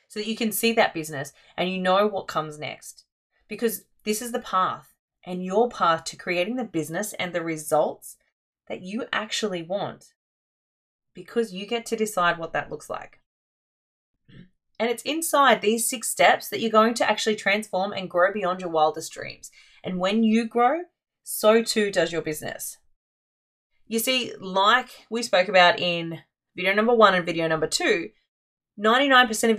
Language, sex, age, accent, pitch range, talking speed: English, female, 30-49, Australian, 175-230 Hz, 170 wpm